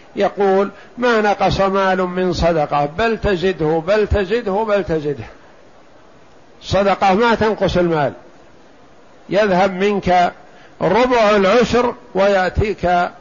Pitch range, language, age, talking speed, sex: 175-205 Hz, Arabic, 50-69, 95 wpm, male